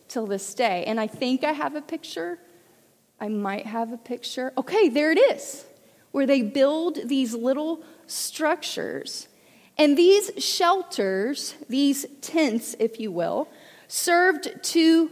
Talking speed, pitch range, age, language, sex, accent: 140 wpm, 220-300 Hz, 30-49, English, female, American